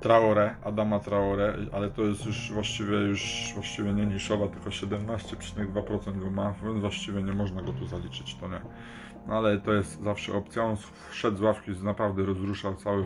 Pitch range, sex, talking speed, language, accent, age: 100-110 Hz, male, 170 wpm, Polish, native, 20-39